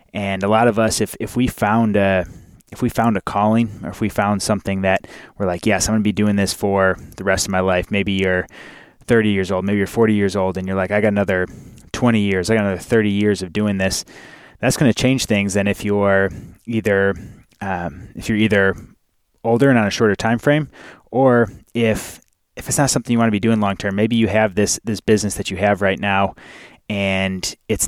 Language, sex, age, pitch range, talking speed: English, male, 20-39, 95-110 Hz, 230 wpm